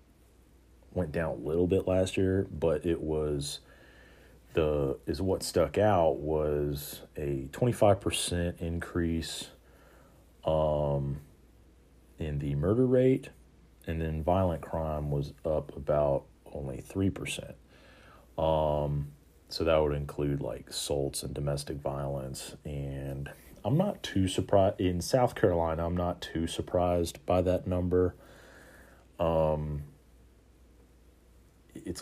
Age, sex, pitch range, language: 40-59, male, 70-85 Hz, English